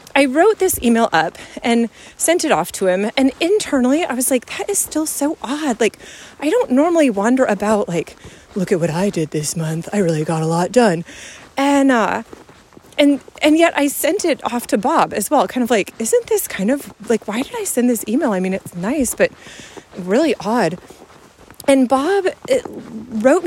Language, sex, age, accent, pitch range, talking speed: English, female, 30-49, American, 210-290 Hz, 200 wpm